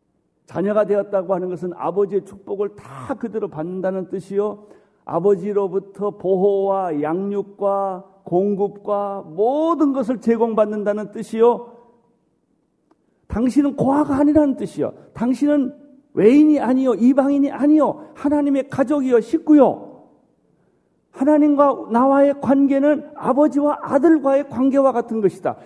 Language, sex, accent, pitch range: Korean, male, native, 165-260 Hz